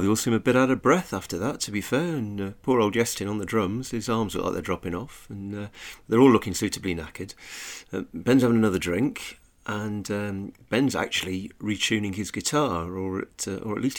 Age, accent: 40-59, British